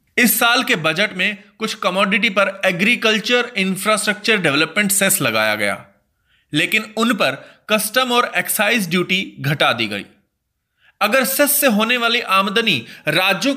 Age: 30-49